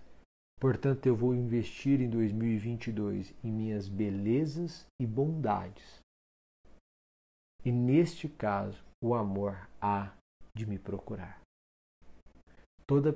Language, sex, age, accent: Portuguese, male, 50-69, Brazilian